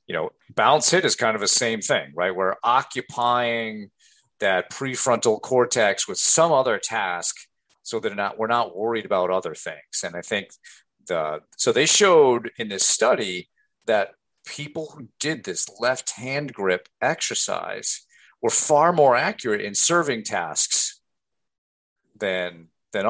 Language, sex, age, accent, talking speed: English, male, 50-69, American, 150 wpm